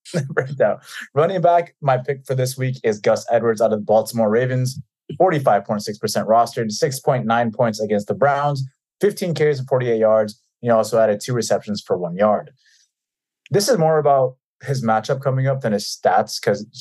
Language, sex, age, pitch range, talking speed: English, male, 20-39, 115-150 Hz, 180 wpm